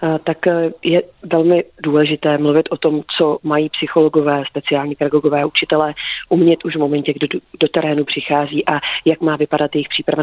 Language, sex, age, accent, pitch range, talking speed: Czech, female, 30-49, native, 150-165 Hz, 160 wpm